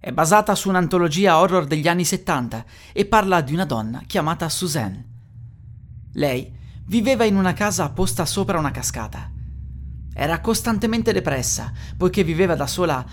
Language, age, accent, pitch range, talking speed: Italian, 30-49, native, 120-190 Hz, 140 wpm